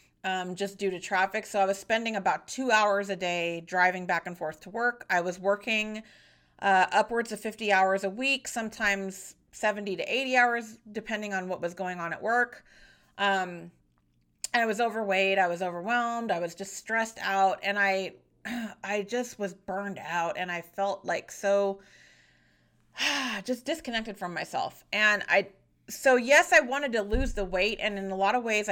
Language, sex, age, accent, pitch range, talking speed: English, female, 30-49, American, 180-220 Hz, 185 wpm